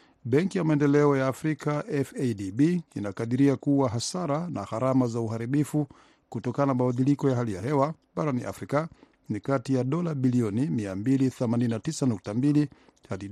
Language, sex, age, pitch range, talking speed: Swahili, male, 50-69, 120-150 Hz, 125 wpm